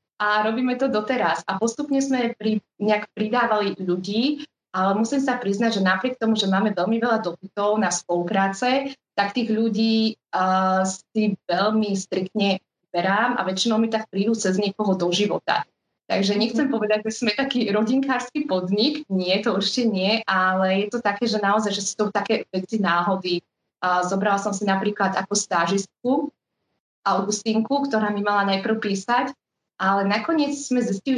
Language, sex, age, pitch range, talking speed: Slovak, female, 20-39, 190-225 Hz, 160 wpm